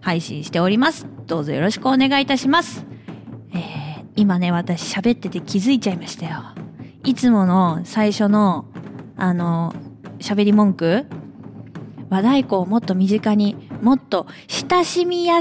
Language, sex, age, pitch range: Japanese, female, 20-39, 170-260 Hz